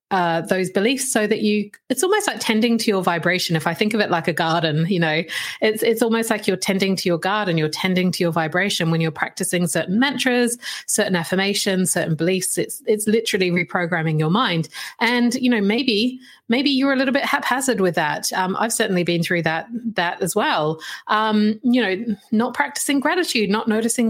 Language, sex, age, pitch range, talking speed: English, female, 30-49, 190-265 Hz, 200 wpm